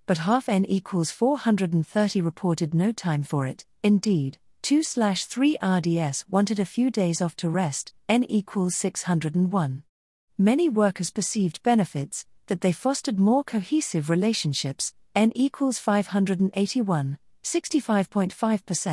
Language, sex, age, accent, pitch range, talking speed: English, female, 40-59, British, 160-215 Hz, 120 wpm